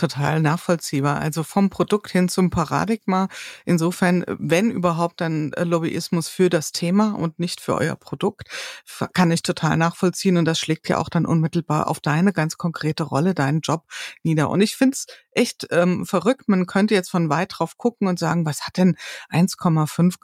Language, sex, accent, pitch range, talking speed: German, female, German, 165-200 Hz, 180 wpm